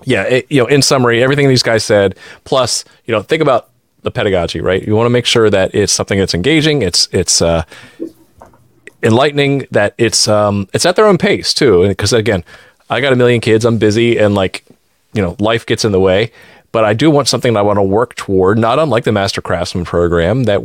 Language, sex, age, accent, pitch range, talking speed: English, male, 30-49, American, 95-120 Hz, 225 wpm